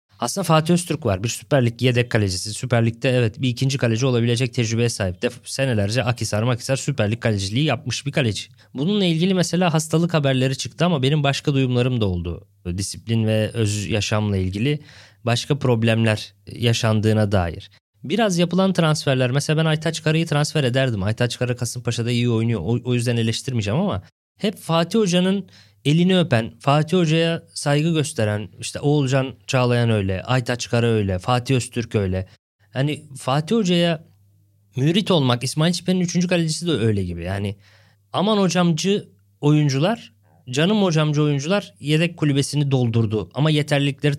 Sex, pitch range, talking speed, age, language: male, 110-150 Hz, 150 wpm, 20-39, Turkish